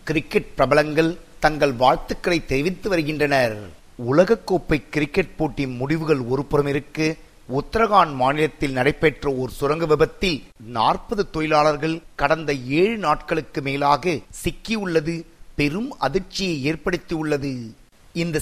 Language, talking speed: Tamil, 95 wpm